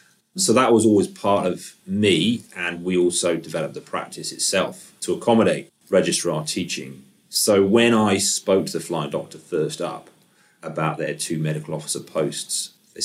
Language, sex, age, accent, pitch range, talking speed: English, male, 30-49, British, 80-95 Hz, 160 wpm